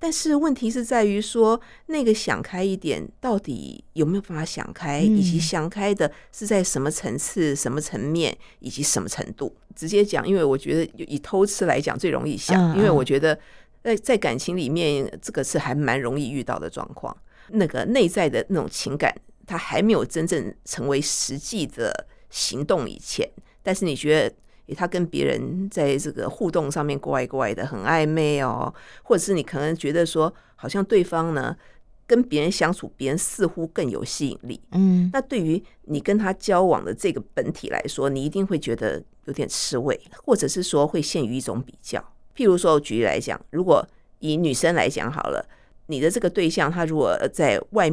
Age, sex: 50-69, female